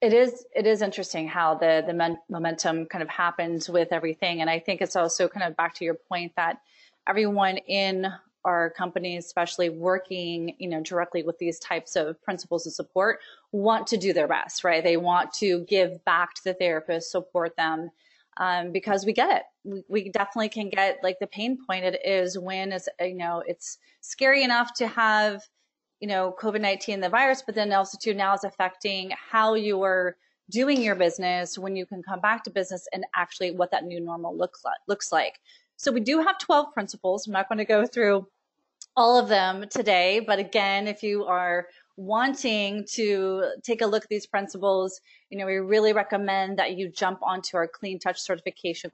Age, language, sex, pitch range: 30-49, English, female, 175-210 Hz